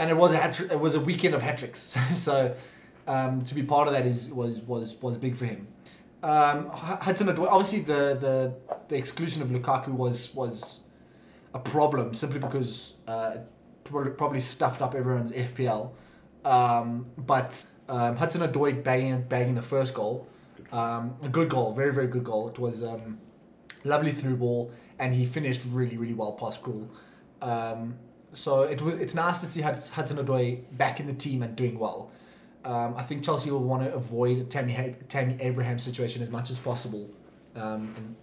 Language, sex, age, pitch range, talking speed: English, male, 20-39, 120-140 Hz, 180 wpm